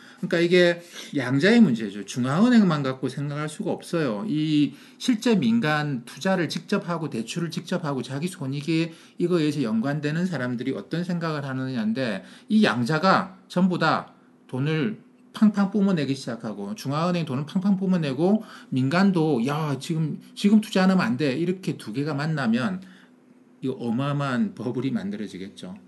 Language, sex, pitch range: Korean, male, 135-215 Hz